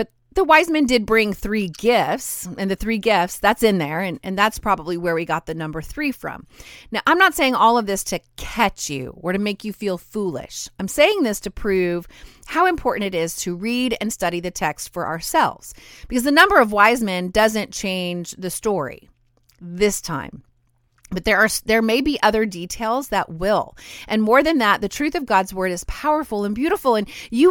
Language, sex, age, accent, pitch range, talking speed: English, female, 30-49, American, 180-240 Hz, 205 wpm